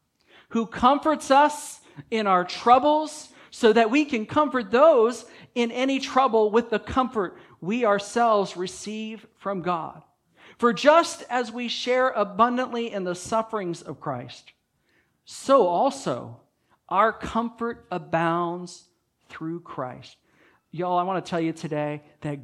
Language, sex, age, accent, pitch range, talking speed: English, male, 50-69, American, 185-260 Hz, 130 wpm